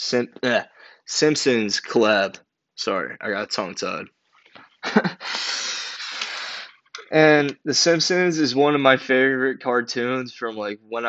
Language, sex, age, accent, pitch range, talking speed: English, male, 20-39, American, 110-130 Hz, 105 wpm